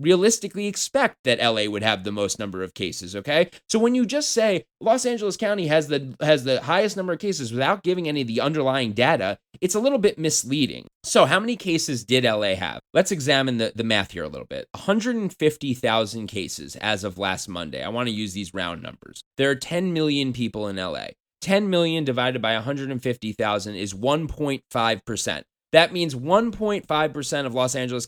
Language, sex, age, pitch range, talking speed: English, male, 20-39, 115-170 Hz, 220 wpm